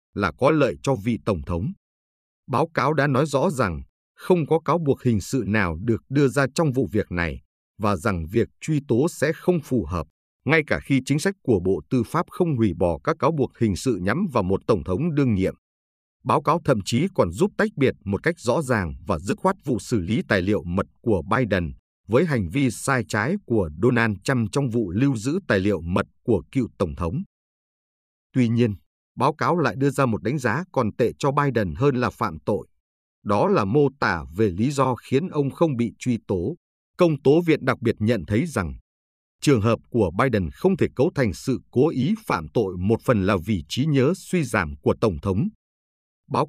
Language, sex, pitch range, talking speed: Vietnamese, male, 90-140 Hz, 215 wpm